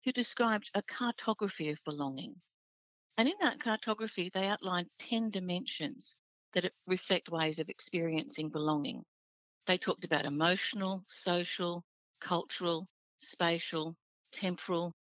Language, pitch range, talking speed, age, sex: English, 165-205 Hz, 110 wpm, 50-69, female